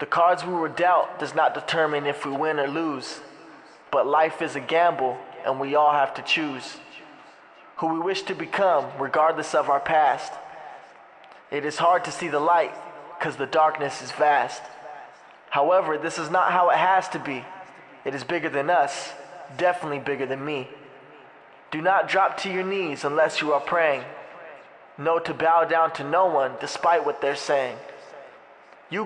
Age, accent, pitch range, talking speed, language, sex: 20-39, American, 145-180 Hz, 175 wpm, English, male